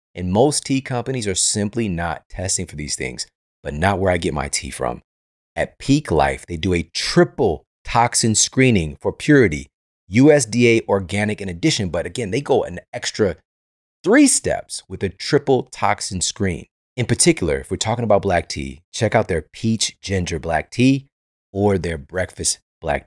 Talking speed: 170 wpm